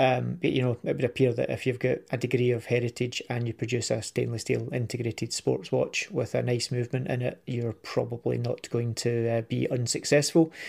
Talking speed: 215 wpm